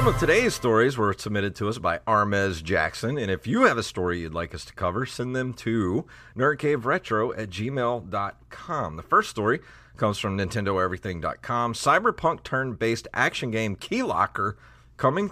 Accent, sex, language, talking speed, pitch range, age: American, male, English, 160 wpm, 100-135 Hz, 40-59